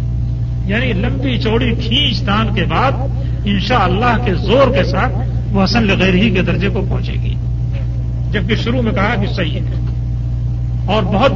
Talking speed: 160 wpm